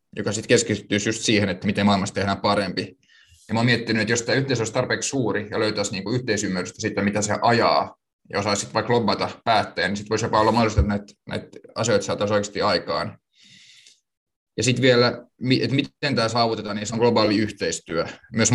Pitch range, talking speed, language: 100-115 Hz, 195 wpm, Finnish